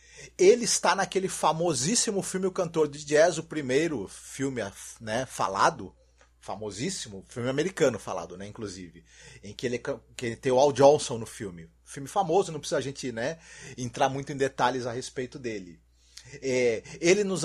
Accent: Brazilian